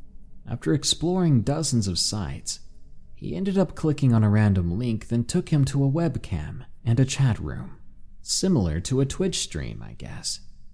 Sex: male